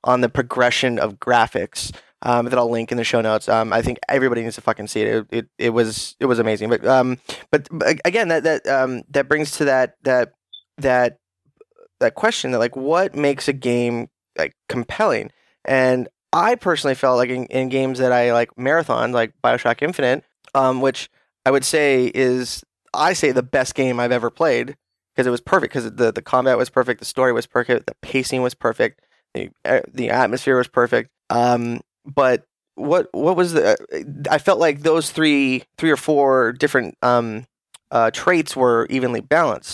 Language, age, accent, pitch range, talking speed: English, 10-29, American, 120-140 Hz, 190 wpm